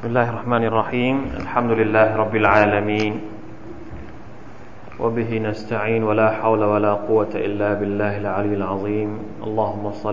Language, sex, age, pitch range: Thai, male, 20-39, 105-110 Hz